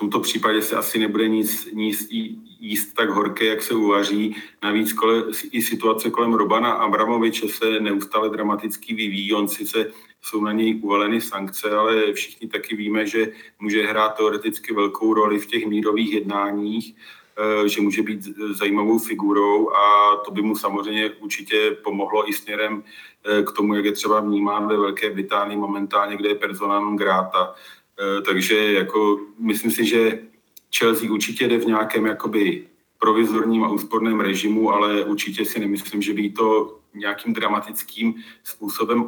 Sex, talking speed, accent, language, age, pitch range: male, 155 wpm, native, Czech, 40-59, 105-115 Hz